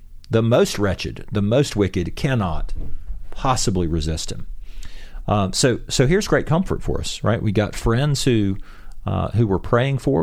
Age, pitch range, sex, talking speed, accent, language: 40-59, 85-115 Hz, male, 165 wpm, American, English